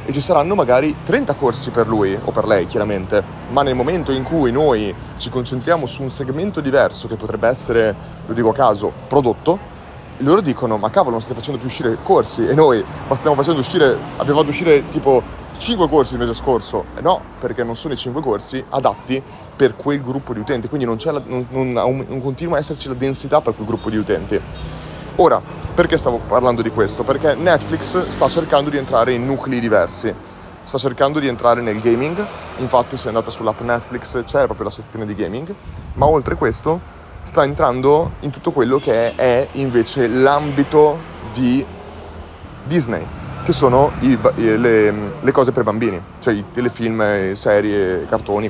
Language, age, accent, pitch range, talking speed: Italian, 30-49, native, 115-140 Hz, 180 wpm